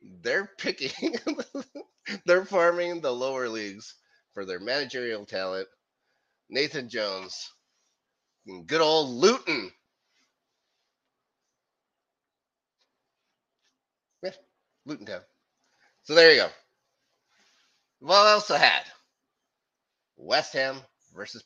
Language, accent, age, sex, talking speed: English, American, 30-49, male, 85 wpm